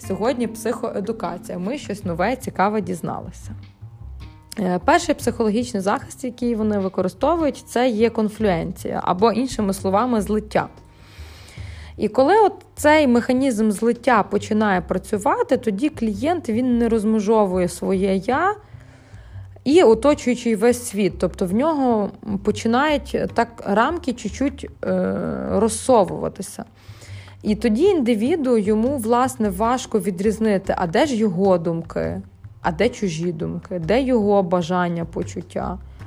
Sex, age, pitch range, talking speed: female, 20-39, 180-240 Hz, 110 wpm